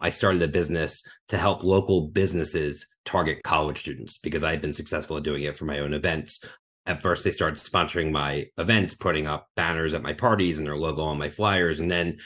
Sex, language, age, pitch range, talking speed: male, English, 30-49, 80-95 Hz, 215 wpm